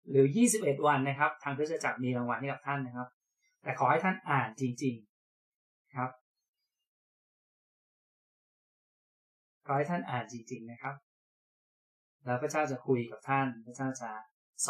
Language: Thai